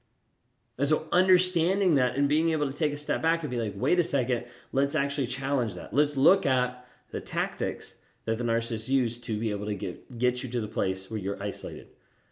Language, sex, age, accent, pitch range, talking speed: English, male, 30-49, American, 115-150 Hz, 215 wpm